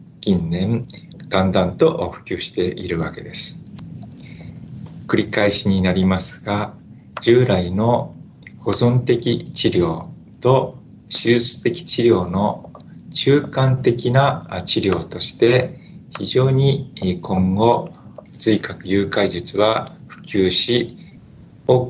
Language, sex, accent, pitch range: Japanese, male, native, 95-125 Hz